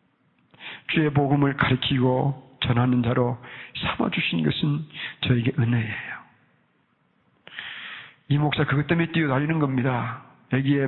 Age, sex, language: 50-69, male, Korean